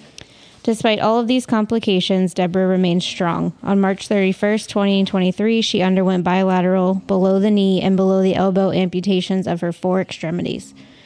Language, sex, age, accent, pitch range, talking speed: English, female, 20-39, American, 180-200 Hz, 145 wpm